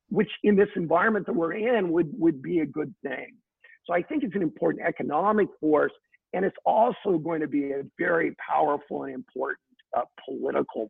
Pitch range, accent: 155-225 Hz, American